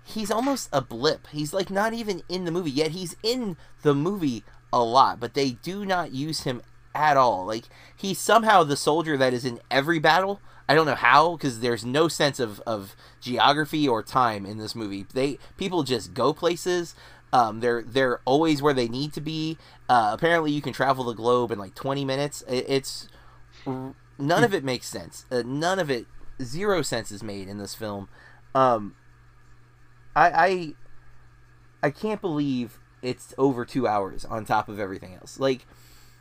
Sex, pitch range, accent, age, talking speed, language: male, 120-155 Hz, American, 30-49, 180 wpm, English